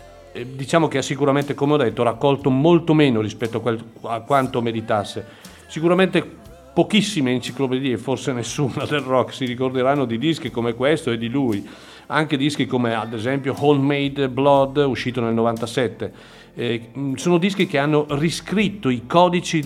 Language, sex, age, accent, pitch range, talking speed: Italian, male, 50-69, native, 115-145 Hz, 145 wpm